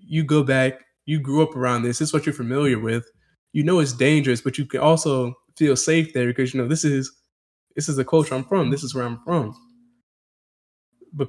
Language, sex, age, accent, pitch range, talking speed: English, male, 20-39, American, 125-155 Hz, 225 wpm